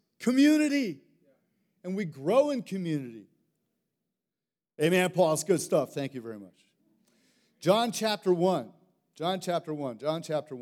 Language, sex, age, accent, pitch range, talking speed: English, male, 40-59, American, 145-195 Hz, 130 wpm